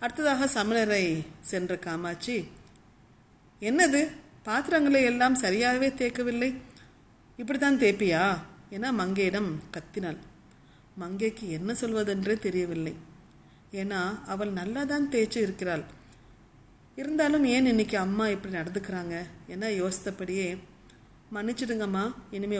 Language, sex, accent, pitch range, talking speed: Tamil, female, native, 175-230 Hz, 90 wpm